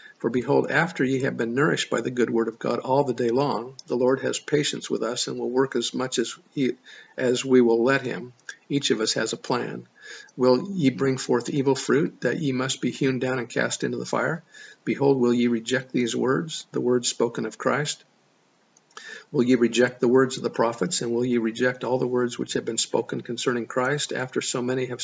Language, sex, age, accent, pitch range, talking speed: English, male, 50-69, American, 120-135 Hz, 225 wpm